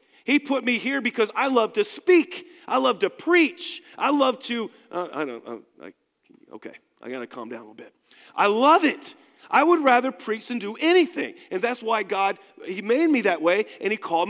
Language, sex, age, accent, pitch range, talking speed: English, male, 40-59, American, 215-310 Hz, 215 wpm